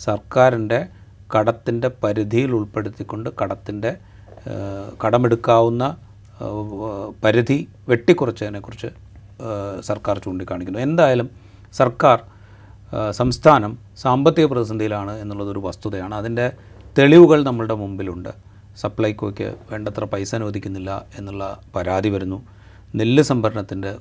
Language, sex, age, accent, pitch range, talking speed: Malayalam, male, 30-49, native, 95-115 Hz, 75 wpm